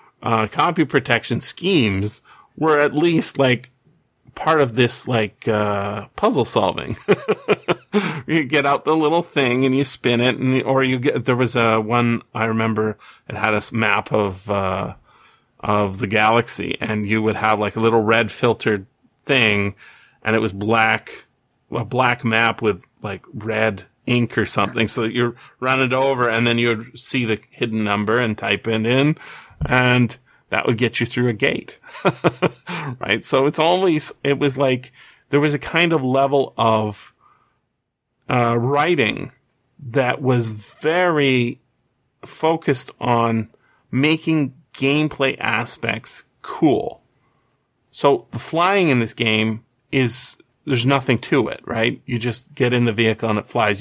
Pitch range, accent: 110-135 Hz, American